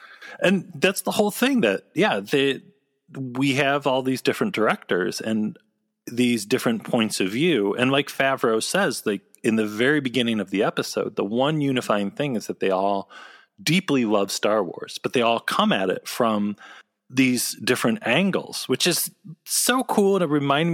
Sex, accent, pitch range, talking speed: male, American, 105-145 Hz, 175 wpm